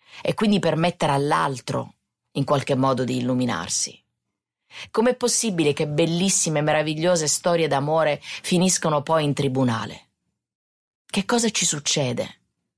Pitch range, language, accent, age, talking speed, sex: 135-165 Hz, English, Italian, 30-49, 120 wpm, female